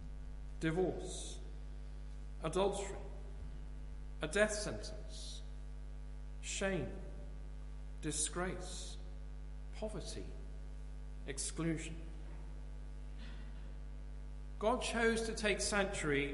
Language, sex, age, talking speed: English, male, 50-69, 50 wpm